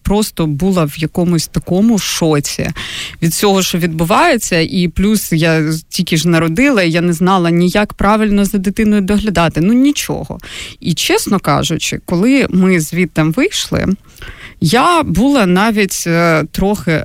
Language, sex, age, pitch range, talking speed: Ukrainian, female, 30-49, 170-215 Hz, 130 wpm